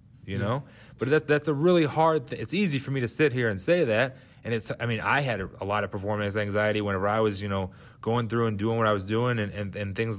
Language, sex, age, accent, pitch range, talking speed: English, male, 30-49, American, 105-125 Hz, 285 wpm